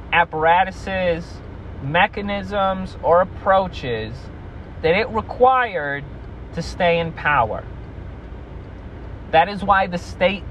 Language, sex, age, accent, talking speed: English, male, 30-49, American, 90 wpm